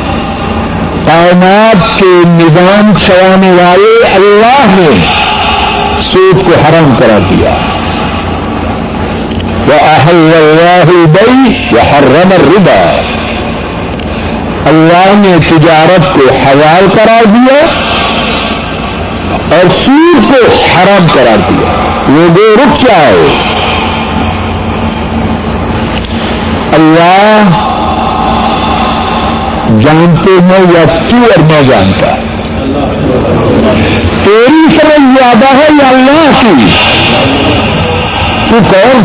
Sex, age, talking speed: male, 60-79, 70 wpm